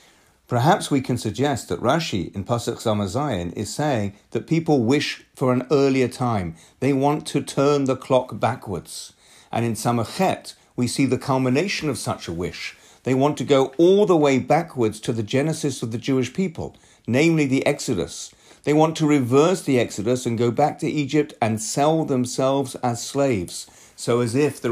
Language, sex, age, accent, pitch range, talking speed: English, male, 50-69, British, 110-140 Hz, 180 wpm